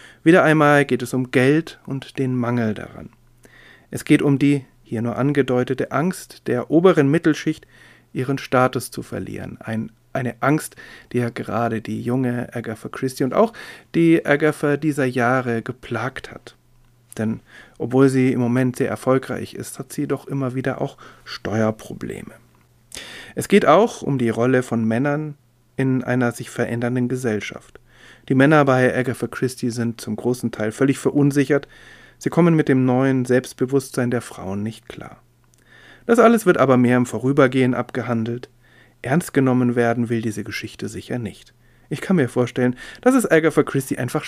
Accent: German